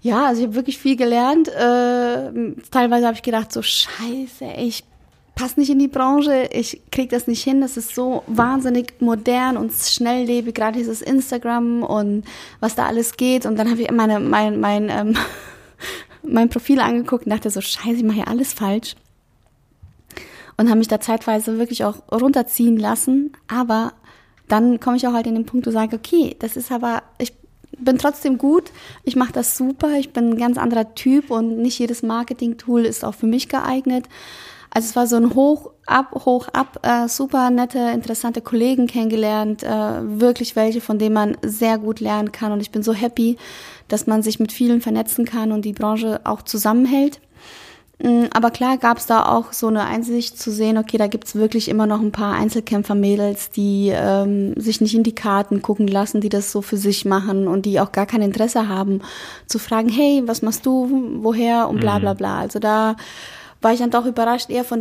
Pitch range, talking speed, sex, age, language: 220-255 Hz, 200 wpm, female, 30-49, German